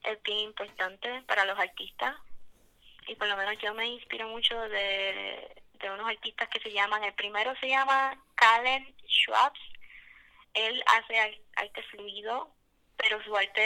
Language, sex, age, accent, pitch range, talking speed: Spanish, female, 20-39, American, 195-220 Hz, 150 wpm